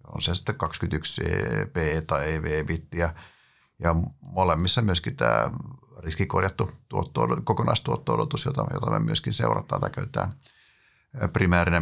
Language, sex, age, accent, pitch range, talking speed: Finnish, male, 50-69, native, 85-115 Hz, 115 wpm